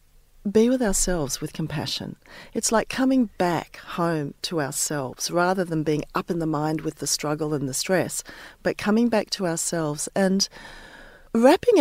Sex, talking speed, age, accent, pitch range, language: female, 165 wpm, 40-59, Australian, 160-235 Hz, English